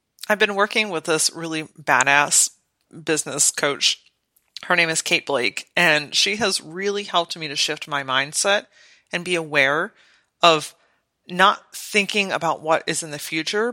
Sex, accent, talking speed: female, American, 155 wpm